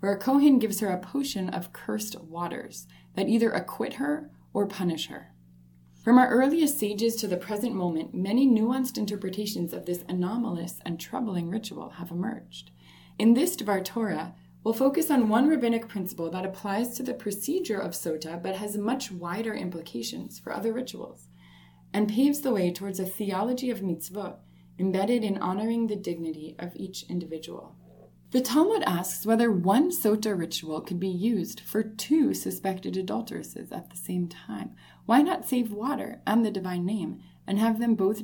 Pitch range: 165-225 Hz